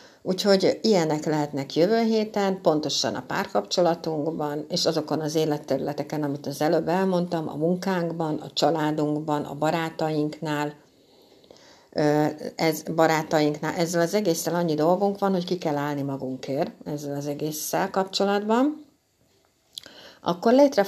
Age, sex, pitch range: 60-79, female, 150-180 Hz